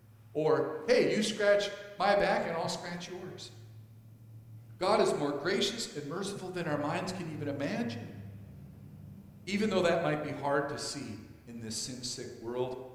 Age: 50-69